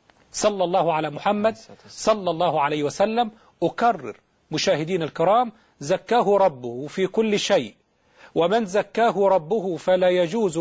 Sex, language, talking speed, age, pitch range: male, Arabic, 120 wpm, 40-59, 200-240 Hz